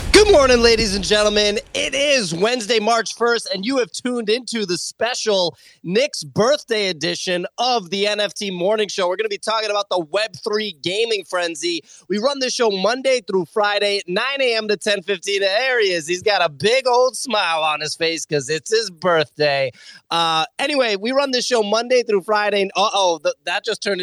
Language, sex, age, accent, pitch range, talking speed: English, male, 20-39, American, 180-230 Hz, 190 wpm